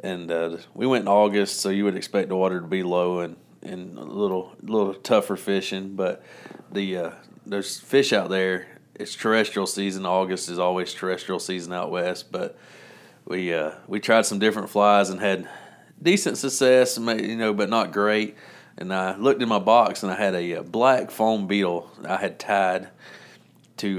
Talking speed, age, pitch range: 185 wpm, 30-49, 90-105 Hz